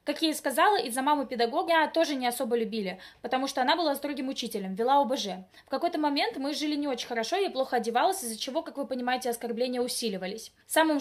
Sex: female